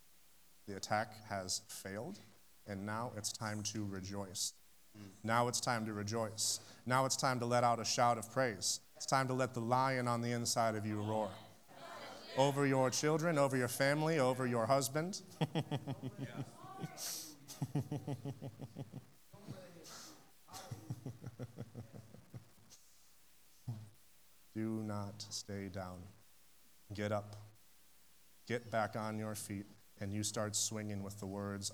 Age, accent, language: 30-49, American, English